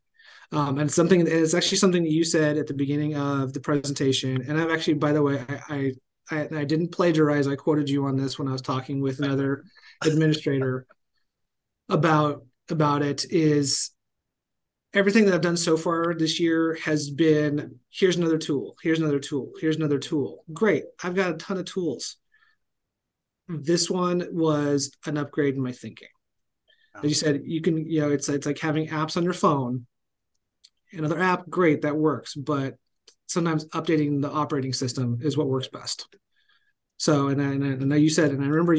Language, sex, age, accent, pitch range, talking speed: English, male, 30-49, American, 135-160 Hz, 175 wpm